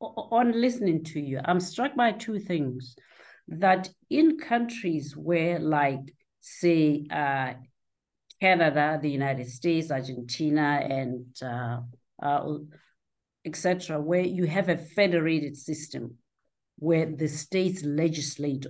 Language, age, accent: English, 50-69, South African